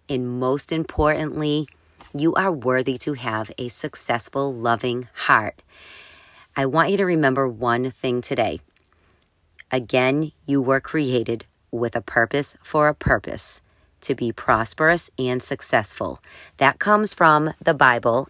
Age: 40-59